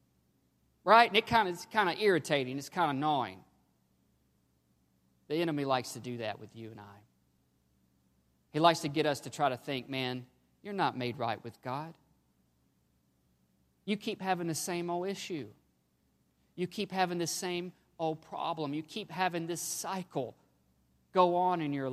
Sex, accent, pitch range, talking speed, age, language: male, American, 115-170 Hz, 160 wpm, 40-59, English